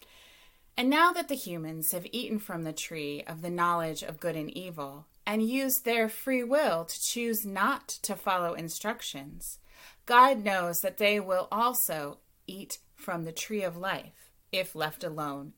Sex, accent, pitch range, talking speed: female, American, 155-225 Hz, 165 wpm